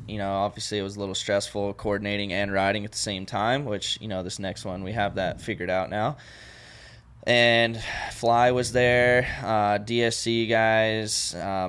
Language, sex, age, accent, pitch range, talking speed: English, male, 20-39, American, 100-115 Hz, 180 wpm